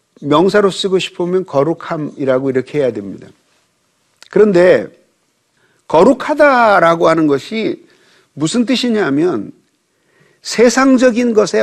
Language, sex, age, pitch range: Korean, male, 50-69, 165-220 Hz